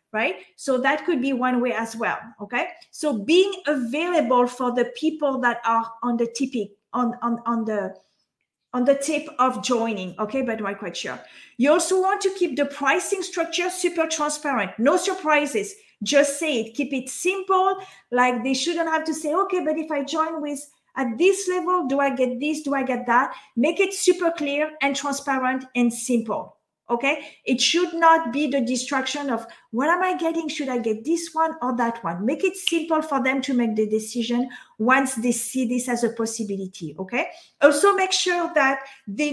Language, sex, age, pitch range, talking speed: English, female, 40-59, 240-310 Hz, 190 wpm